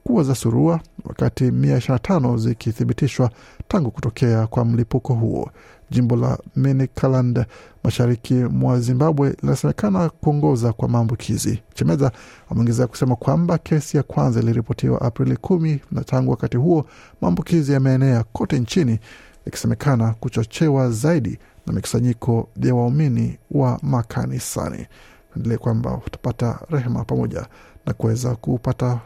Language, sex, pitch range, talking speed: Swahili, male, 120-140 Hz, 120 wpm